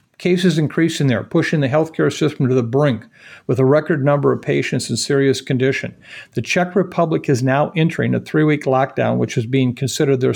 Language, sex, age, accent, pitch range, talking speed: English, male, 50-69, American, 130-170 Hz, 195 wpm